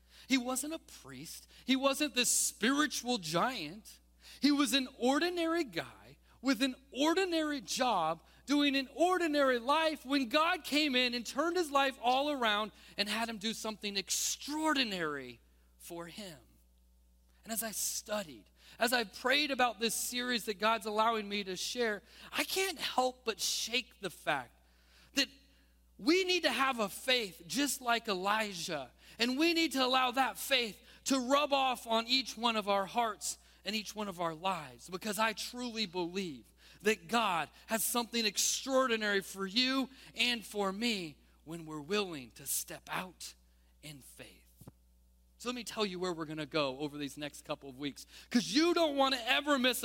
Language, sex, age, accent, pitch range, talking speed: English, male, 40-59, American, 170-265 Hz, 170 wpm